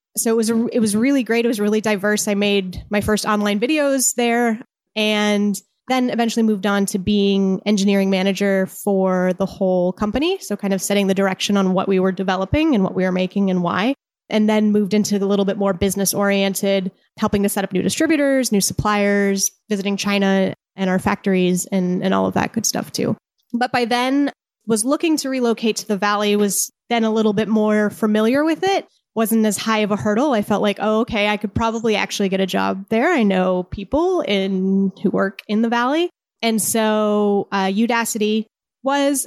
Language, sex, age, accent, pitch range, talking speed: English, female, 20-39, American, 195-230 Hz, 205 wpm